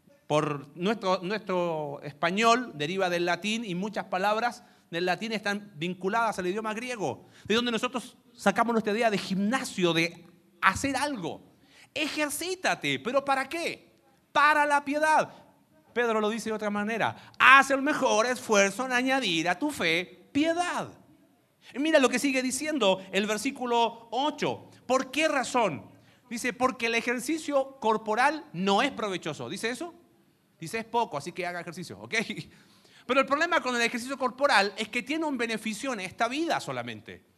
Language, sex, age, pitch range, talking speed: Spanish, male, 40-59, 185-270 Hz, 155 wpm